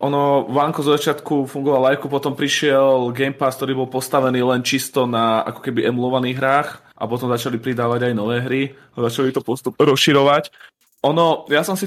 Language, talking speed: Slovak, 180 wpm